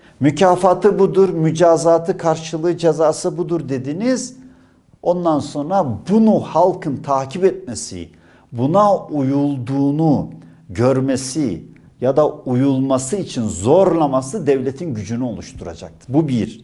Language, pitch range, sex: Turkish, 120-170 Hz, male